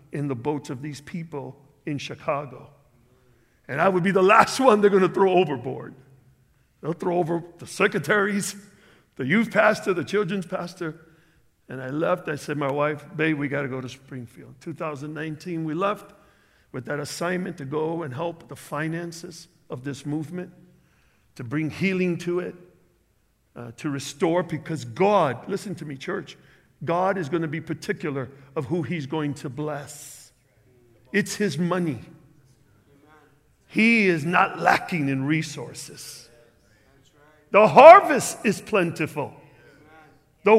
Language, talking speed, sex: English, 150 wpm, male